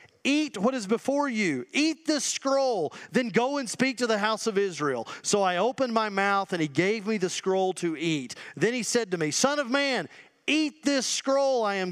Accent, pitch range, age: American, 195-270 Hz, 40-59